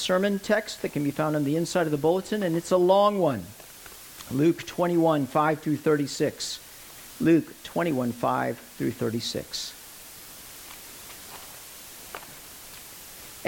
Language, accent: English, American